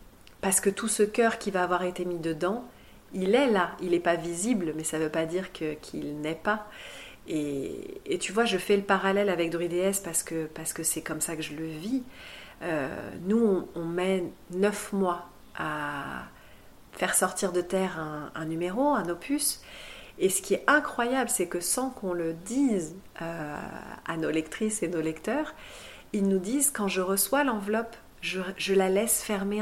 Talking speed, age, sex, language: 195 wpm, 40-59, female, French